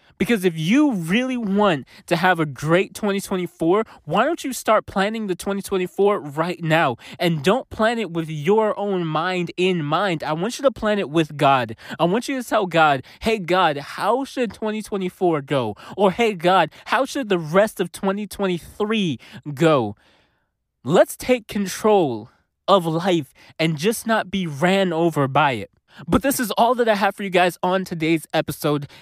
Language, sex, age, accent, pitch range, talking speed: English, male, 20-39, American, 165-215 Hz, 175 wpm